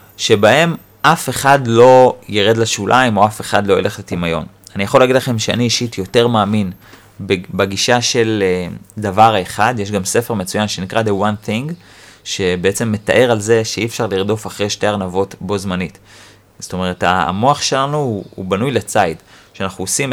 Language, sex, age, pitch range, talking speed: Hebrew, male, 30-49, 100-120 Hz, 160 wpm